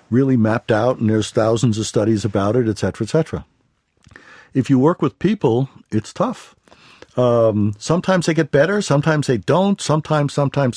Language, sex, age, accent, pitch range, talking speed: English, male, 60-79, American, 125-155 Hz, 175 wpm